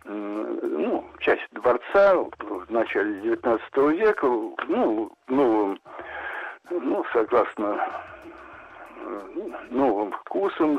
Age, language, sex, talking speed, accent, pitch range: 60-79, Russian, male, 80 wpm, native, 245-365 Hz